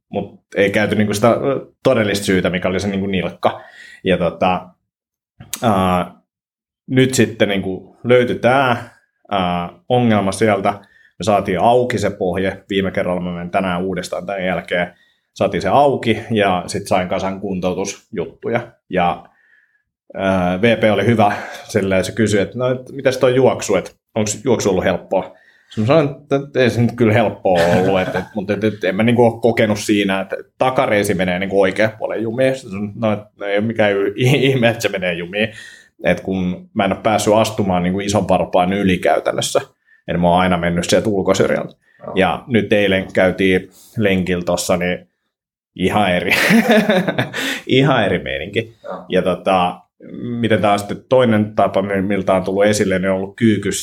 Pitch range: 95-110 Hz